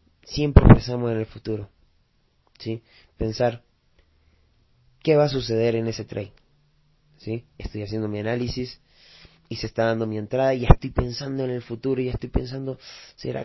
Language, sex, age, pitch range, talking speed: Spanish, male, 30-49, 110-135 Hz, 165 wpm